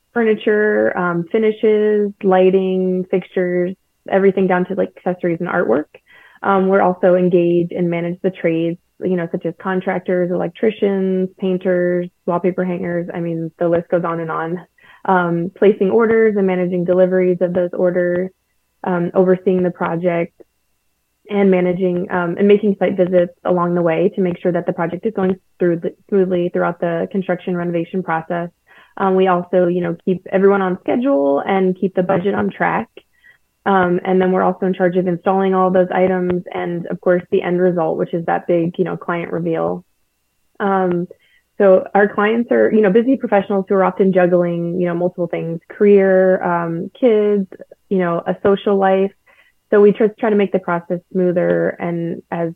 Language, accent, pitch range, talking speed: English, American, 175-195 Hz, 175 wpm